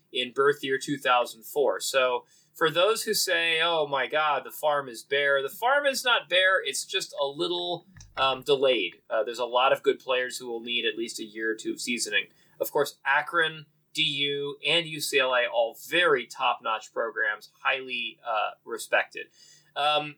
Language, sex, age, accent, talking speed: English, male, 30-49, American, 180 wpm